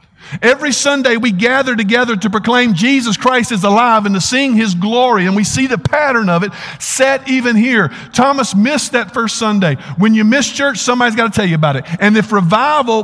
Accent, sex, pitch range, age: American, male, 150-225 Hz, 50-69